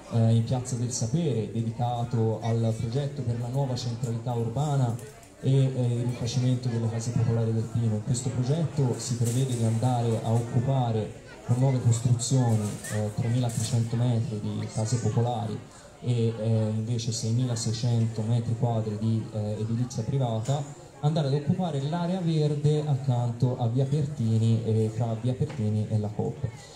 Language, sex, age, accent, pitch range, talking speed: Italian, male, 20-39, native, 115-135 Hz, 145 wpm